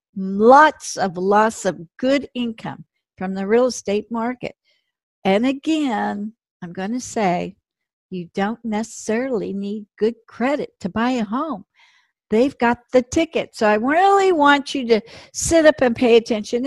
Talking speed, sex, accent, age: 150 wpm, female, American, 60-79